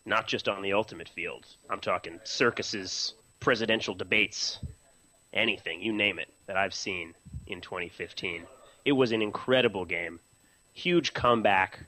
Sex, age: male, 30-49